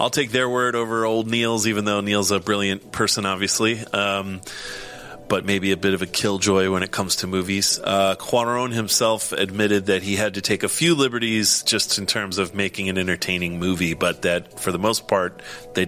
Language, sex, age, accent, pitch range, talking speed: English, male, 30-49, American, 95-110 Hz, 205 wpm